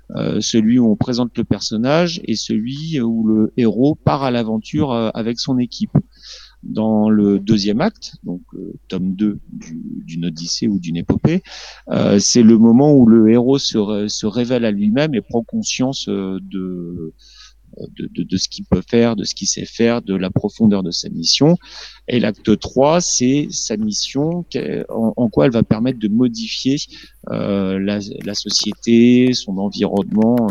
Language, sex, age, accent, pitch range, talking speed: French, male, 40-59, French, 110-140 Hz, 175 wpm